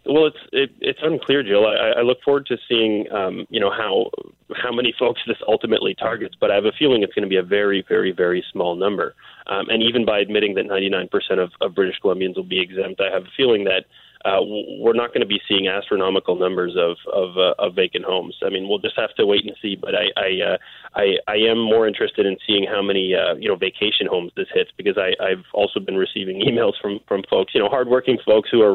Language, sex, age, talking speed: English, male, 20-39, 245 wpm